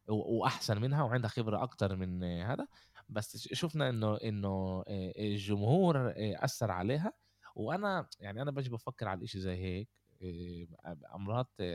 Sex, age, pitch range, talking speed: male, 20-39, 100-130 Hz, 125 wpm